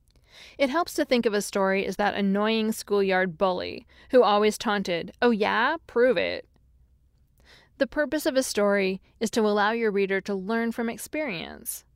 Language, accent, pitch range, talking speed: English, American, 180-225 Hz, 165 wpm